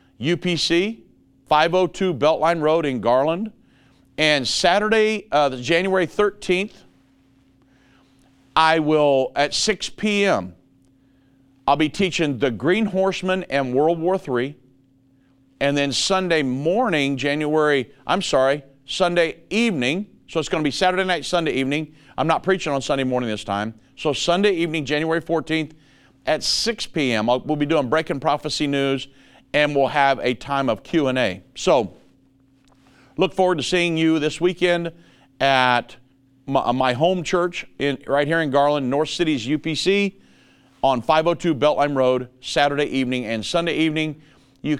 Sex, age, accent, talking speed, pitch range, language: male, 50-69, American, 140 wpm, 135-170 Hz, English